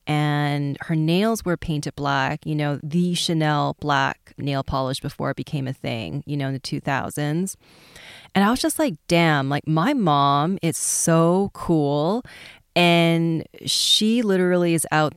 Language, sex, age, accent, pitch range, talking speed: English, female, 30-49, American, 150-185 Hz, 160 wpm